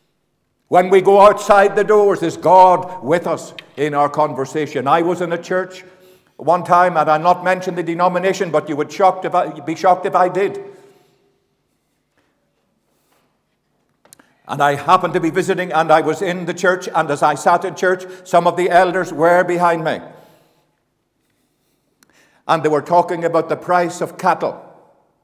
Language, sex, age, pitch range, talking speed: English, male, 60-79, 160-195 Hz, 160 wpm